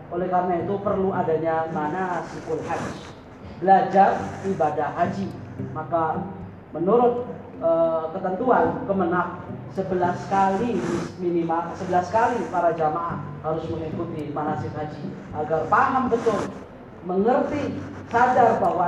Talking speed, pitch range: 100 wpm, 150-185 Hz